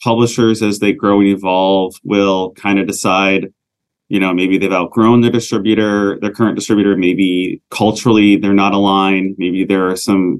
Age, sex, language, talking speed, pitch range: 30-49, male, English, 165 wpm, 95-110 Hz